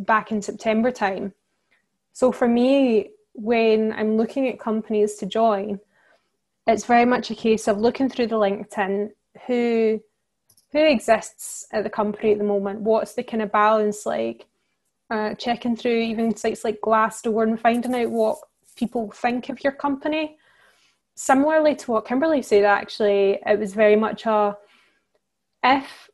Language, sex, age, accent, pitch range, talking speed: English, female, 10-29, British, 210-245 Hz, 155 wpm